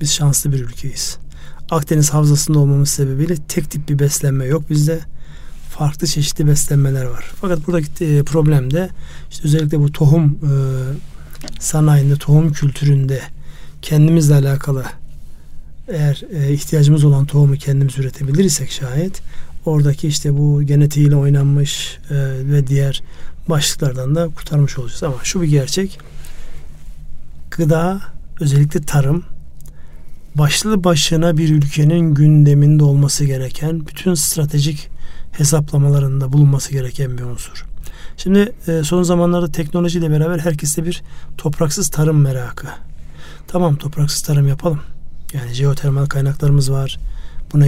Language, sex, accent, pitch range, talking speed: Turkish, male, native, 130-155 Hz, 115 wpm